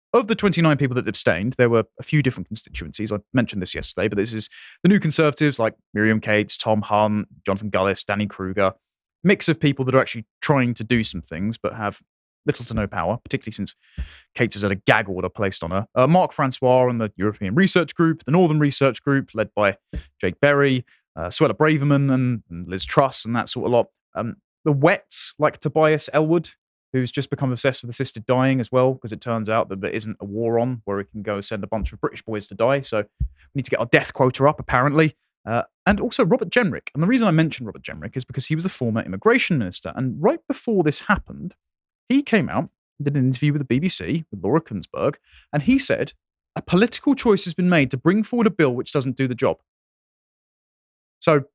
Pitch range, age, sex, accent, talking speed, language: 105-150 Hz, 20-39, male, British, 225 wpm, English